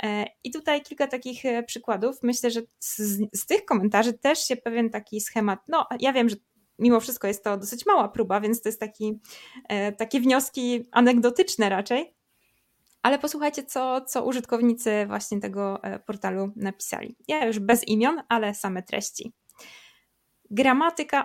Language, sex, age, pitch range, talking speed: Polish, female, 20-39, 205-255 Hz, 145 wpm